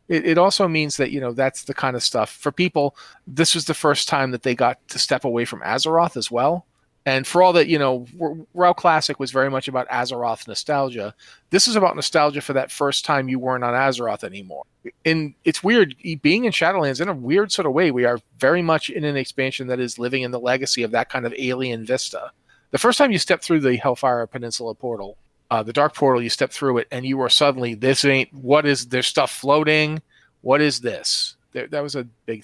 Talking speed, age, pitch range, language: 230 wpm, 40-59, 120-155 Hz, English